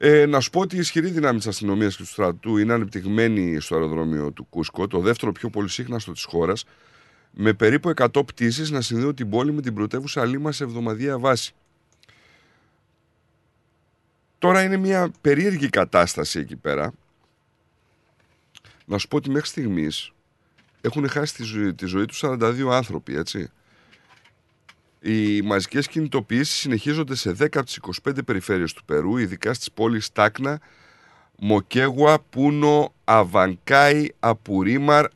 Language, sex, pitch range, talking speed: Greek, male, 100-145 Hz, 140 wpm